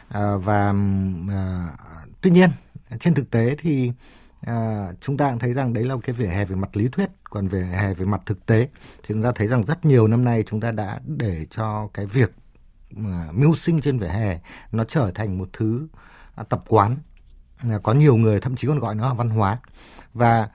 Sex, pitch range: male, 95-130 Hz